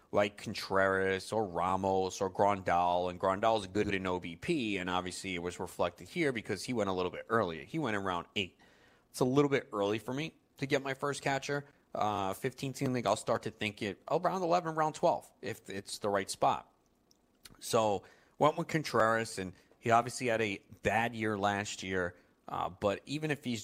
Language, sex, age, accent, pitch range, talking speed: English, male, 30-49, American, 95-115 Hz, 195 wpm